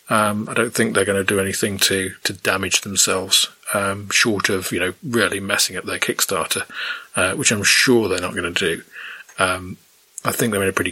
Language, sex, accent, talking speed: English, male, British, 215 wpm